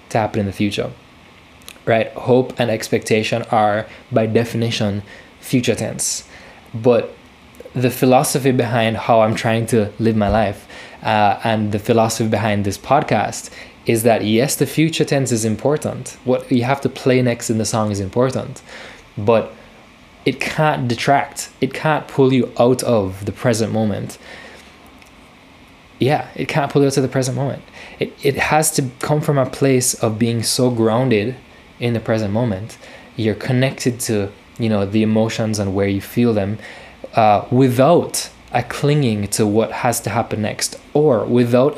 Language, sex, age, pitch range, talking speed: English, male, 20-39, 110-125 Hz, 160 wpm